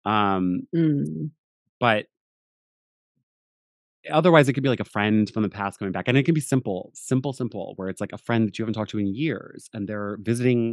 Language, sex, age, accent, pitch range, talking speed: English, male, 30-49, American, 95-145 Hz, 200 wpm